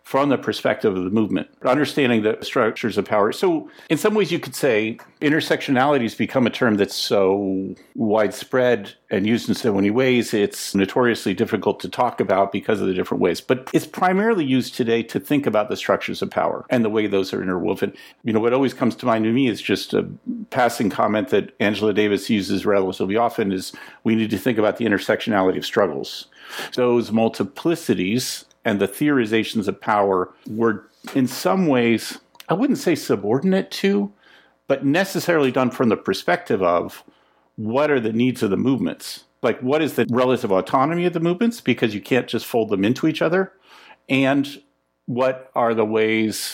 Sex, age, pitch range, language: male, 50-69, 105-140 Hz, English